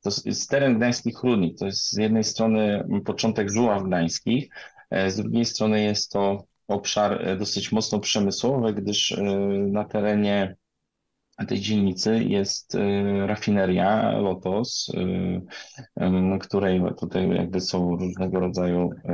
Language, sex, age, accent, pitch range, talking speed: Polish, male, 20-39, native, 90-110 Hz, 115 wpm